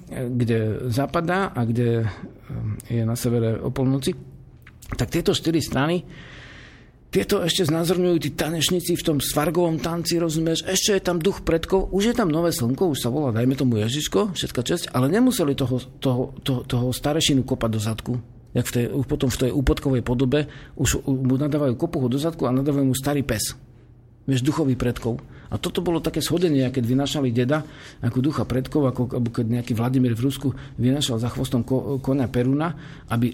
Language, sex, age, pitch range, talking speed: Slovak, male, 50-69, 120-155 Hz, 170 wpm